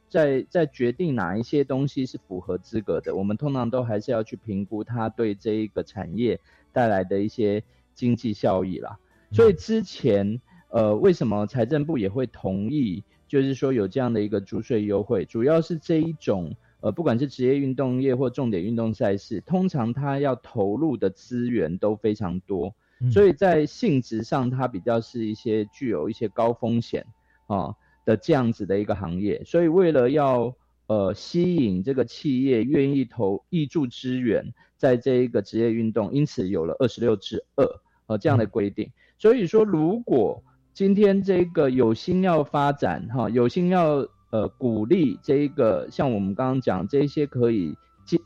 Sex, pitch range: male, 110-145 Hz